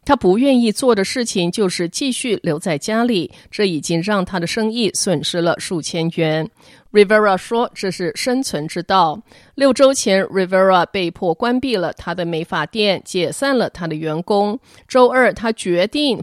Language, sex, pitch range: Chinese, female, 170-235 Hz